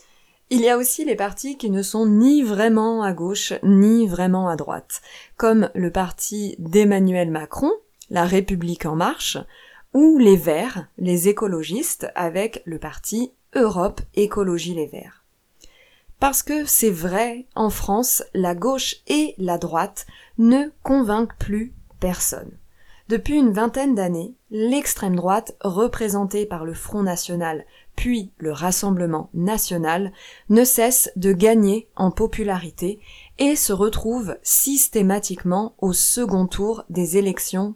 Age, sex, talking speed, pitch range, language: 20-39, female, 130 wpm, 180-230 Hz, French